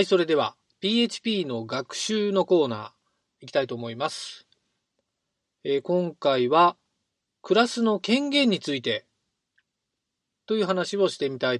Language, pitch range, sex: Japanese, 130-210 Hz, male